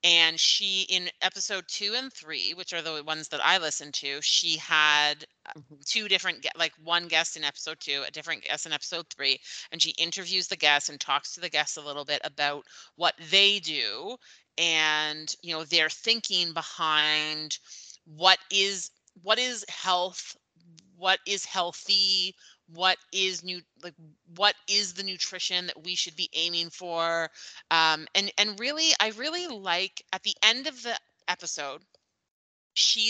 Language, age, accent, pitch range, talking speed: English, 30-49, American, 160-195 Hz, 165 wpm